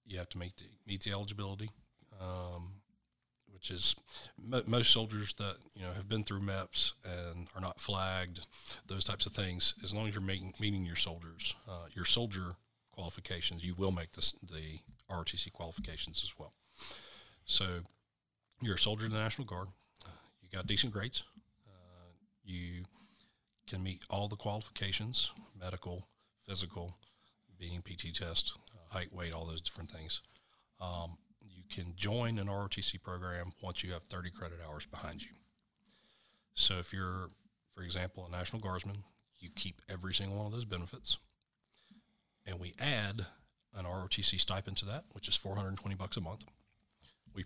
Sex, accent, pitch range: male, American, 90-105 Hz